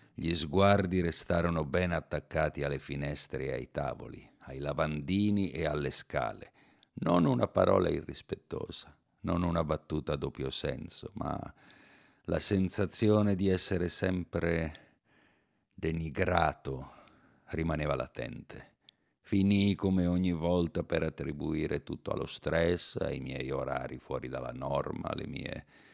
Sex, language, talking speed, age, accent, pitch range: male, Italian, 120 wpm, 50-69, native, 75-95 Hz